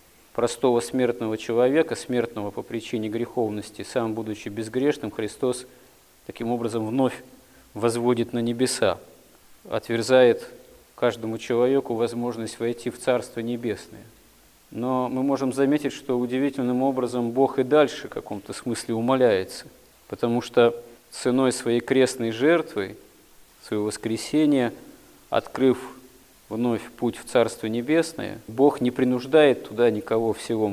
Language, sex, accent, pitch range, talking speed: Russian, male, native, 115-130 Hz, 115 wpm